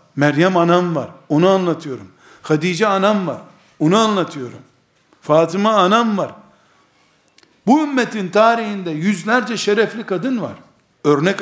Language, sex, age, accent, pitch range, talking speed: Turkish, male, 60-79, native, 145-200 Hz, 110 wpm